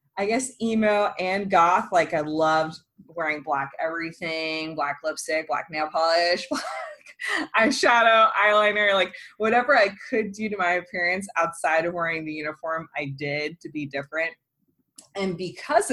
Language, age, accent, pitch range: English, 20-39, American, 155-195 Hz